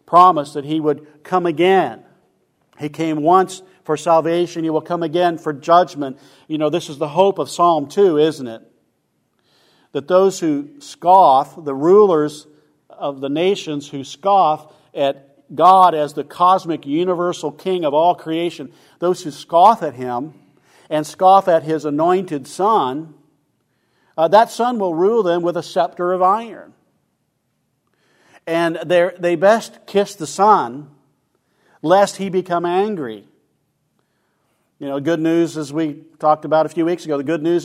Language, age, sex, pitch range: English, 50-69, male, 150-180 Hz